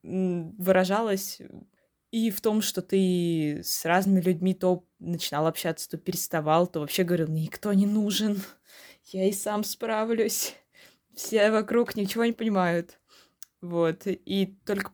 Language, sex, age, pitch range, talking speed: Russian, female, 20-39, 160-190 Hz, 130 wpm